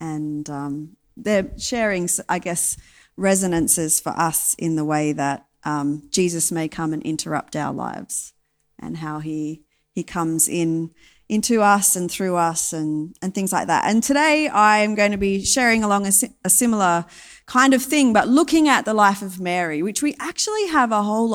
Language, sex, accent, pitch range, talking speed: English, female, Australian, 175-240 Hz, 185 wpm